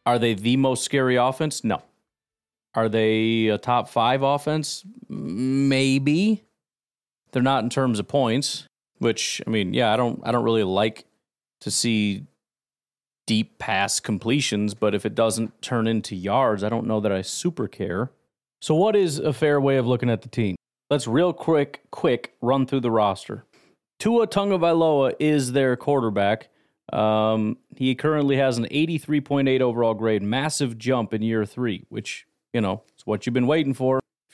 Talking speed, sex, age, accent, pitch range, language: 165 wpm, male, 30-49, American, 115-145 Hz, English